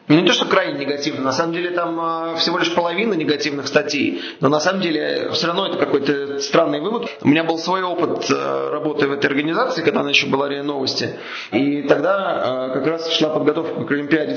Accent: native